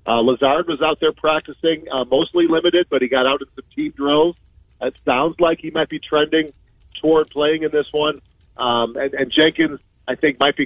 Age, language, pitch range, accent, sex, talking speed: 40-59, English, 115-145 Hz, American, male, 210 wpm